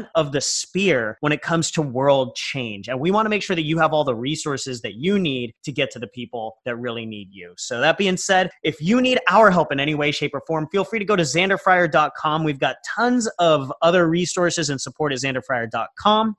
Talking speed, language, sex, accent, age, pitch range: 235 wpm, English, male, American, 30-49, 140-185 Hz